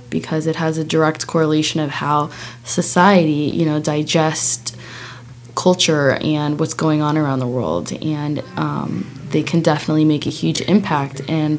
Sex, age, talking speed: female, 20-39, 155 wpm